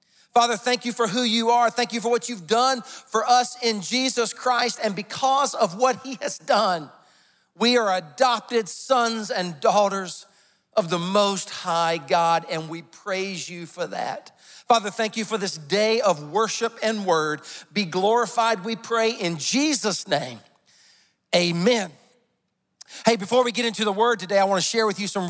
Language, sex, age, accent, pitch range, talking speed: English, male, 40-59, American, 185-230 Hz, 180 wpm